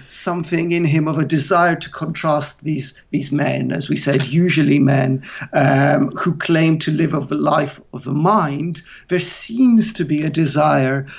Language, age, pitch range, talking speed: English, 50-69, 140-180 Hz, 175 wpm